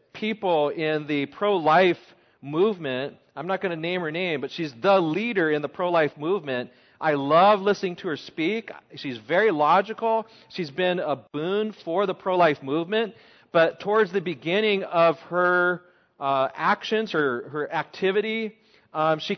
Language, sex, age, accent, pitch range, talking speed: English, male, 40-59, American, 145-200 Hz, 160 wpm